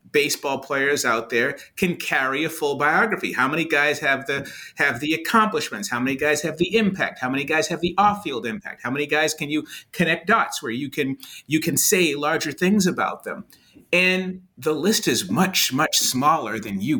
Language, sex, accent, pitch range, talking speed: English, male, American, 140-190 Hz, 200 wpm